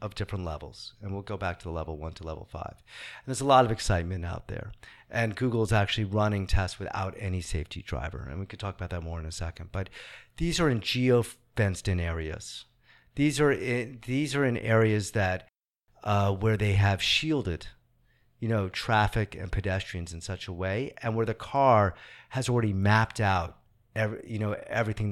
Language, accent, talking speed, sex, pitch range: English, American, 200 wpm, male, 95-115 Hz